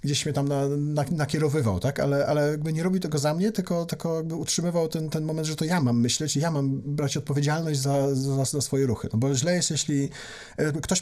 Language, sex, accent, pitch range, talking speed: Polish, male, native, 140-165 Hz, 235 wpm